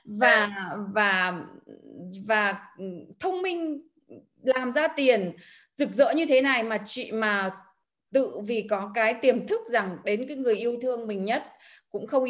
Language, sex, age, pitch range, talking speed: Vietnamese, female, 20-39, 195-265 Hz, 155 wpm